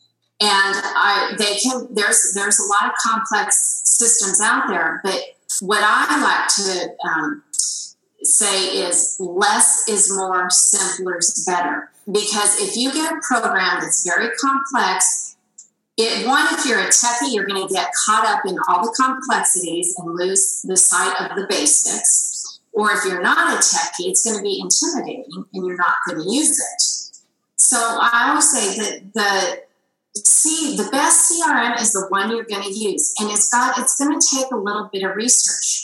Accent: American